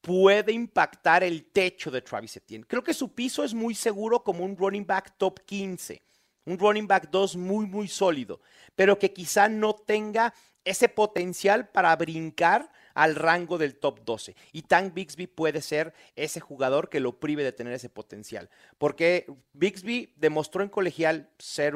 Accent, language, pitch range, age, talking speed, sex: Mexican, Spanish, 150-210 Hz, 40-59, 170 wpm, male